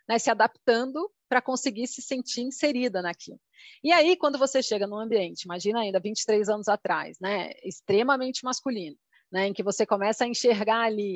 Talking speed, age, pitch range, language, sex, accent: 170 wpm, 30-49, 210-250 Hz, Portuguese, female, Brazilian